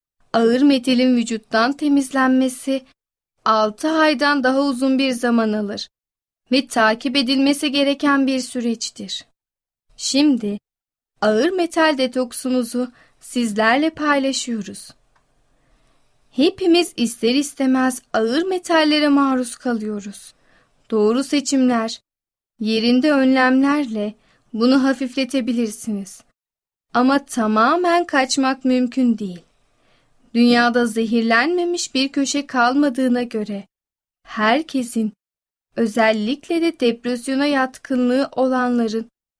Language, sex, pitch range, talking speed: Turkish, female, 225-280 Hz, 80 wpm